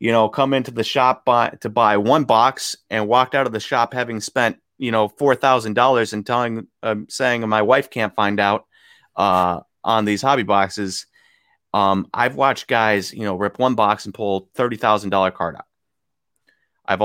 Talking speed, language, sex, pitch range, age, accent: 180 wpm, English, male, 95-110 Hz, 30-49, American